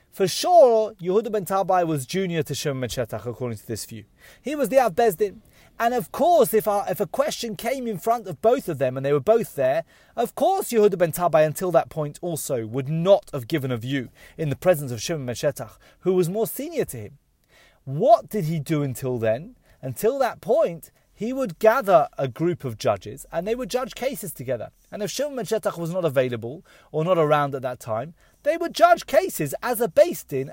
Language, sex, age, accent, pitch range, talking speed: English, male, 30-49, British, 140-225 Hz, 210 wpm